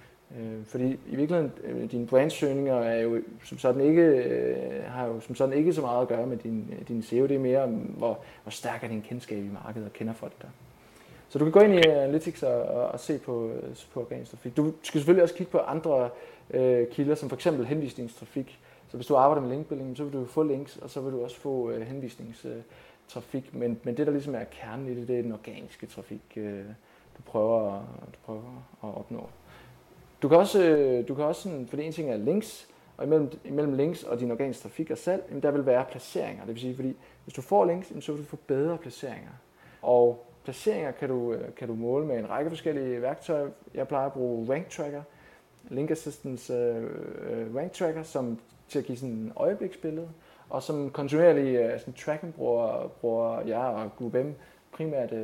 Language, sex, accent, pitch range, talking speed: Danish, male, native, 115-150 Hz, 200 wpm